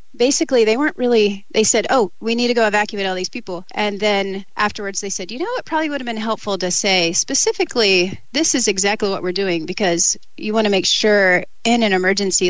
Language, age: English, 30-49